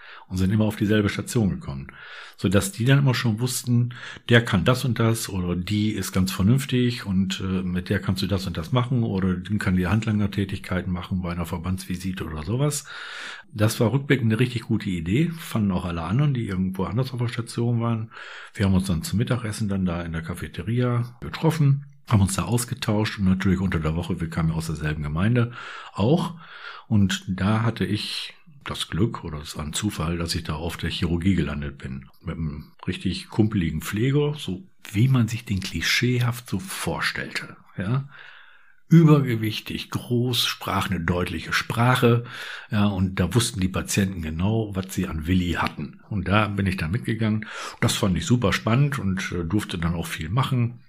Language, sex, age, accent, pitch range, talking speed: German, male, 60-79, German, 90-120 Hz, 185 wpm